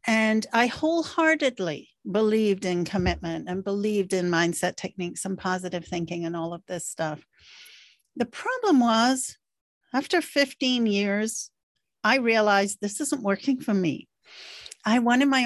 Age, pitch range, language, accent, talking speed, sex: 50-69, 190-265 Hz, English, American, 135 wpm, female